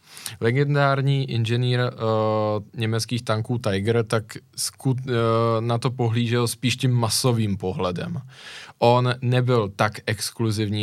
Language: Czech